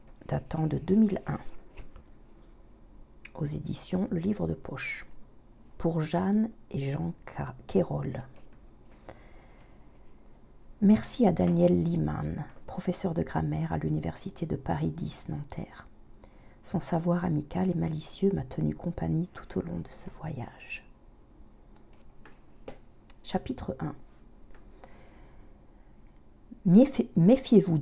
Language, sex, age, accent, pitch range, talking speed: French, female, 50-69, French, 135-200 Hz, 95 wpm